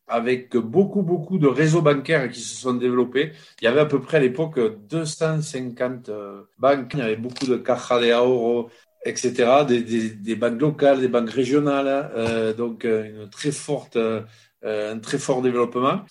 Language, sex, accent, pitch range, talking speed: French, male, French, 120-150 Hz, 170 wpm